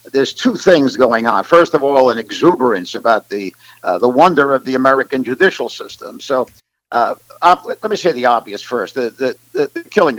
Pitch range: 130-165 Hz